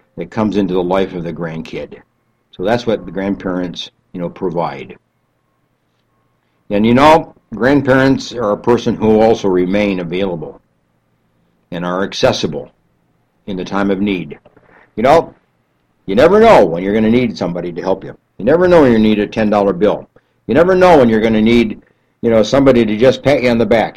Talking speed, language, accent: 190 wpm, English, American